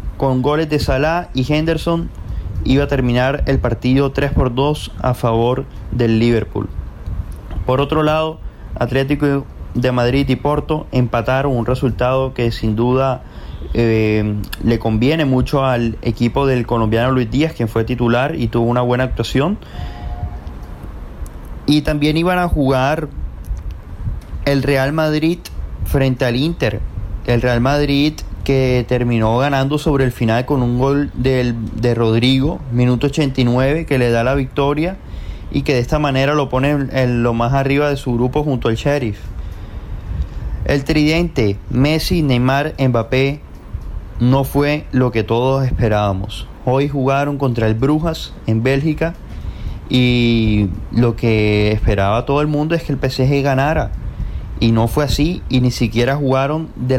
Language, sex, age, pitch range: Spanish, male, 30-49, 110-140 Hz